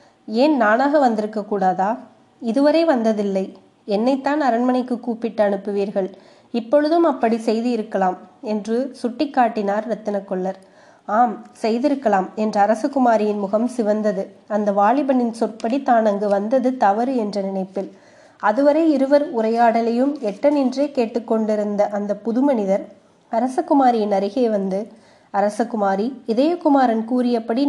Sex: female